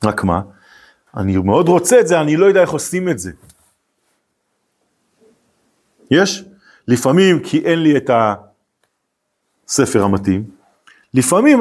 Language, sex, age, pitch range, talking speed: Hebrew, male, 40-59, 115-190 Hz, 120 wpm